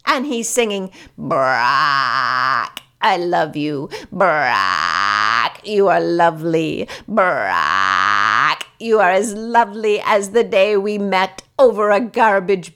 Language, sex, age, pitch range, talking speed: English, female, 50-69, 170-235 Hz, 115 wpm